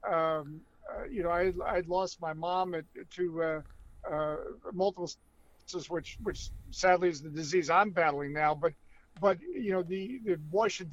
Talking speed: 170 wpm